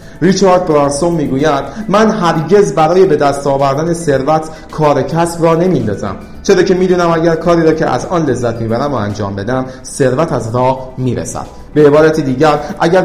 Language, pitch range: Persian, 125-160 Hz